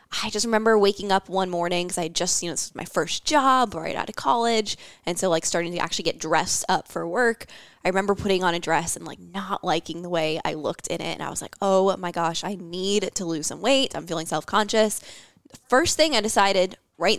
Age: 10-29